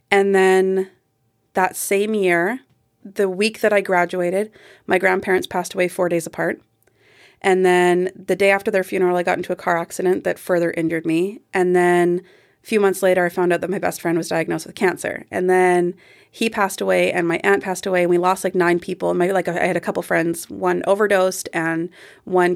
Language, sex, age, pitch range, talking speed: English, female, 30-49, 175-200 Hz, 210 wpm